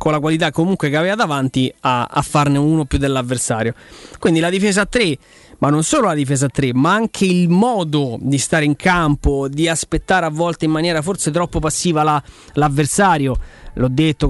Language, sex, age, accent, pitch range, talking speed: Italian, male, 20-39, native, 130-155 Hz, 195 wpm